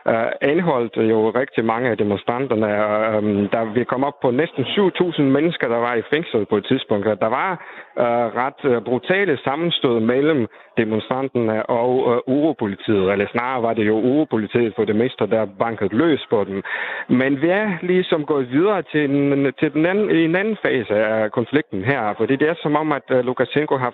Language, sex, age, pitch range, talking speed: Danish, male, 50-69, 120-160 Hz, 175 wpm